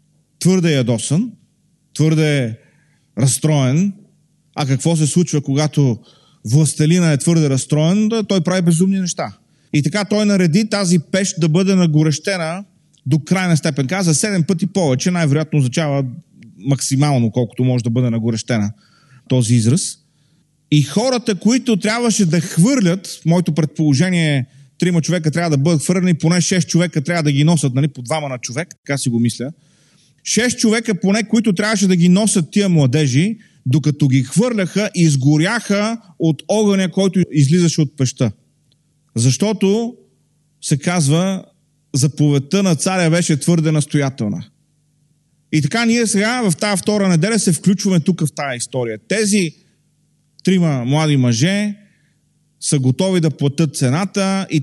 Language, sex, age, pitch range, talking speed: Bulgarian, male, 30-49, 145-185 Hz, 145 wpm